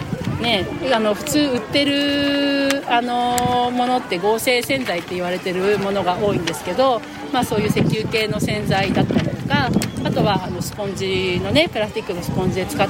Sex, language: female, Japanese